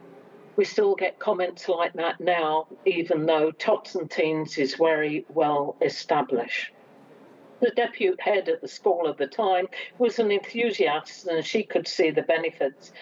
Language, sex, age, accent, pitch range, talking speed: English, female, 50-69, British, 160-215 Hz, 155 wpm